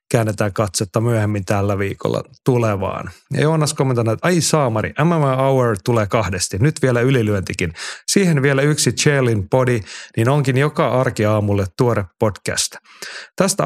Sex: male